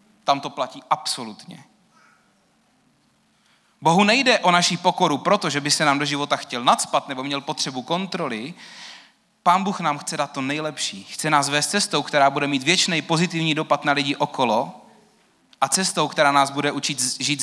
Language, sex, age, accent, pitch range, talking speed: Czech, male, 30-49, native, 140-175 Hz, 165 wpm